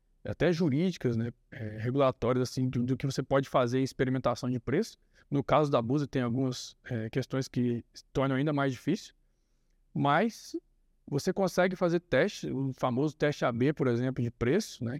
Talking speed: 170 wpm